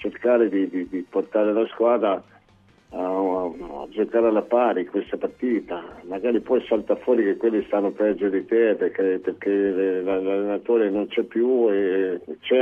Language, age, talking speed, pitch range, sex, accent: Italian, 50-69, 160 wpm, 85-105 Hz, male, native